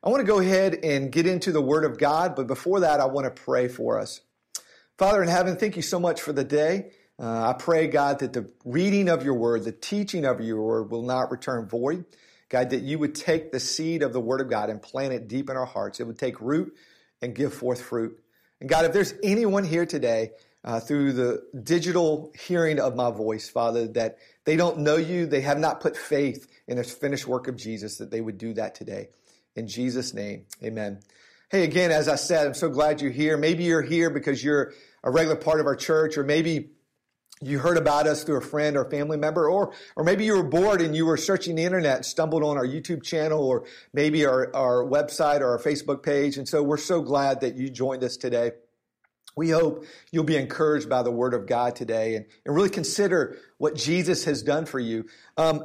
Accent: American